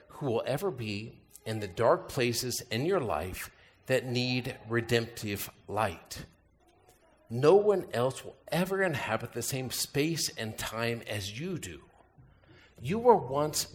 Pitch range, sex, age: 95-130 Hz, male, 50-69